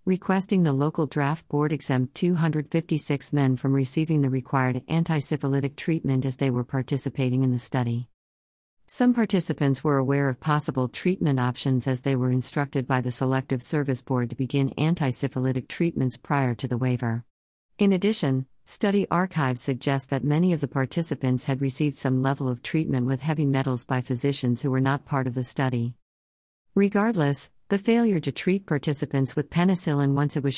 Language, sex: English, female